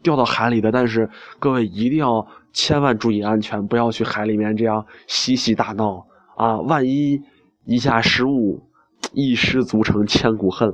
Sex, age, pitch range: male, 20-39, 105-130 Hz